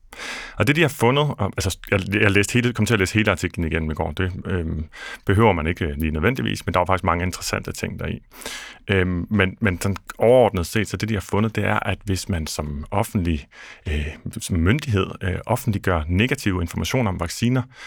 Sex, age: male, 30-49